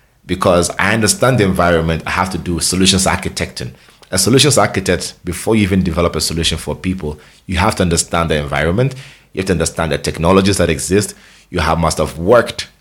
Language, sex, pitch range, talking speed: English, male, 80-100 Hz, 190 wpm